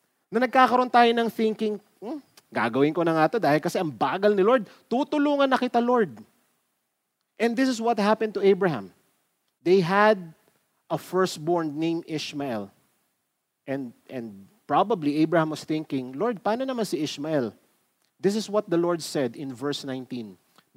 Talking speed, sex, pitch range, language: 155 wpm, male, 160-230 Hz, Filipino